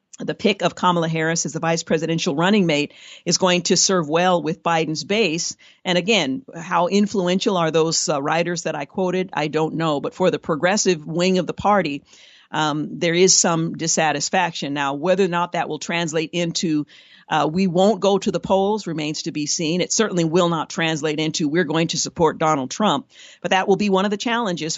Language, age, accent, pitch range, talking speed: English, 50-69, American, 160-195 Hz, 205 wpm